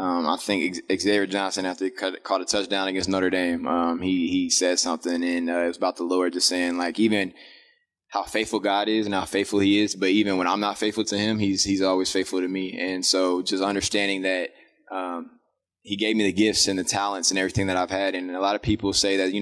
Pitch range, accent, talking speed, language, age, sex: 95-100 Hz, American, 245 wpm, English, 20-39, male